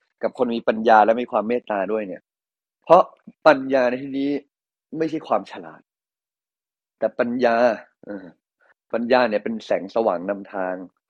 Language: Thai